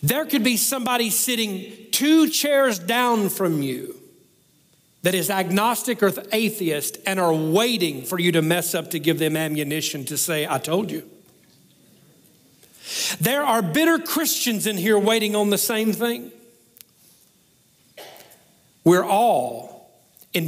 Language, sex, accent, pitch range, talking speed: English, male, American, 170-235 Hz, 135 wpm